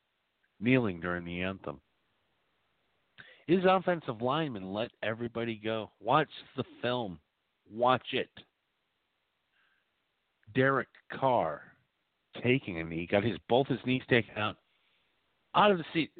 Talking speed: 115 wpm